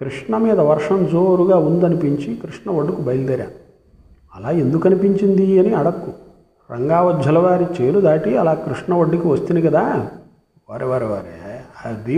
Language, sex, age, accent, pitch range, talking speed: Telugu, male, 50-69, native, 135-180 Hz, 120 wpm